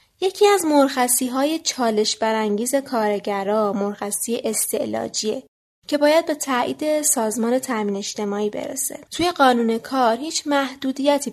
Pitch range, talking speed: 215-285 Hz, 115 wpm